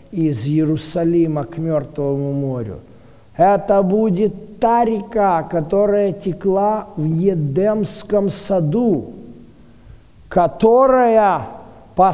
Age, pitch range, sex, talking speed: 50-69, 155-220 Hz, male, 80 wpm